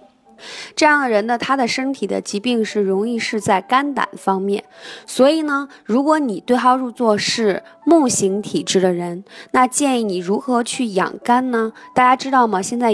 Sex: female